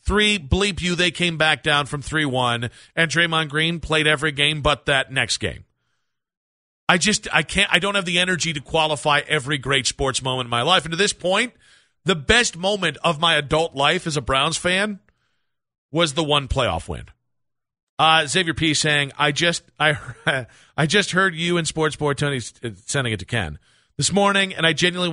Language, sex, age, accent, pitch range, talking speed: English, male, 40-59, American, 140-175 Hz, 195 wpm